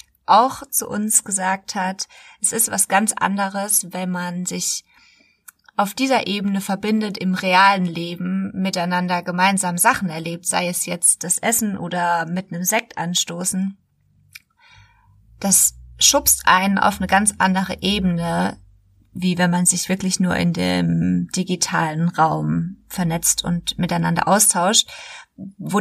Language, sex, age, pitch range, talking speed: German, female, 30-49, 175-210 Hz, 135 wpm